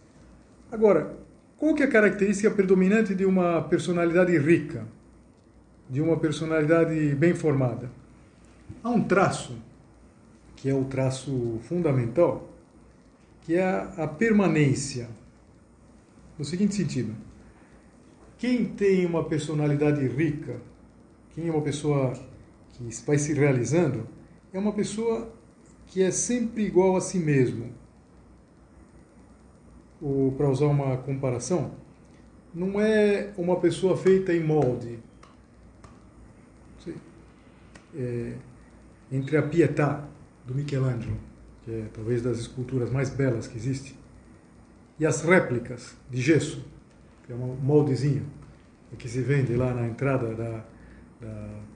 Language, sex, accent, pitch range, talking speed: Portuguese, male, Brazilian, 125-170 Hz, 115 wpm